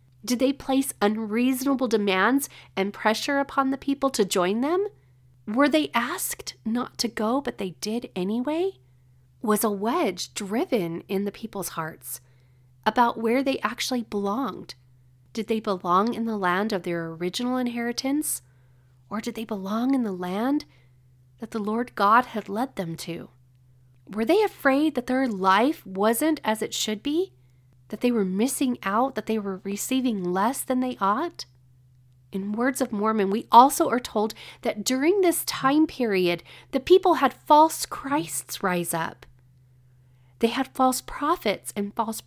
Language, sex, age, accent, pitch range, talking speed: English, female, 30-49, American, 170-260 Hz, 160 wpm